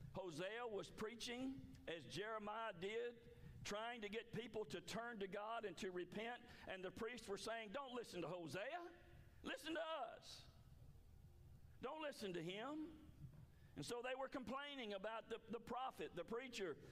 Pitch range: 135-215 Hz